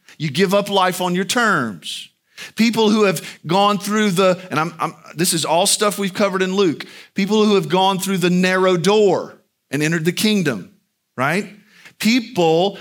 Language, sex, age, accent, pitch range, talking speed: English, male, 40-59, American, 130-195 Hz, 170 wpm